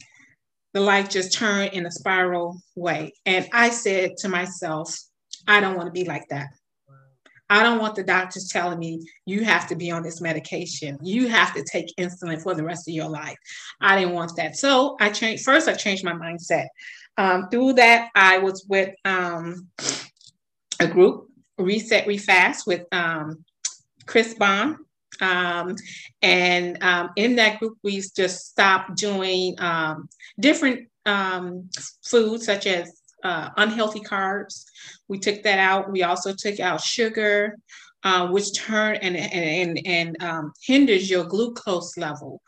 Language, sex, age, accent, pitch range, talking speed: English, female, 30-49, American, 175-210 Hz, 160 wpm